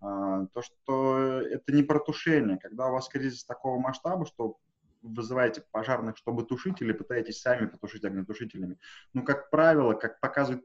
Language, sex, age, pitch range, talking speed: Russian, male, 20-39, 115-140 Hz, 145 wpm